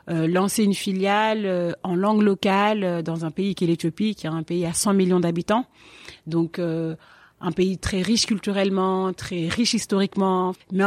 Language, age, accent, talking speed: French, 30-49, French, 190 wpm